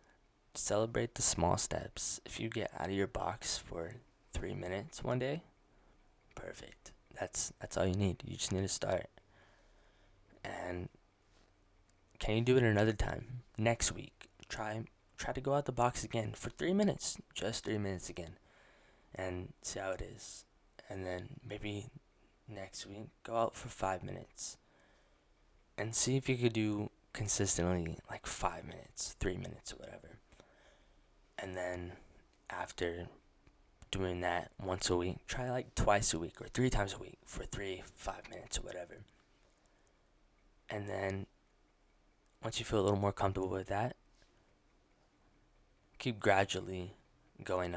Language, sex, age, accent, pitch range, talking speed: English, male, 20-39, American, 90-110 Hz, 150 wpm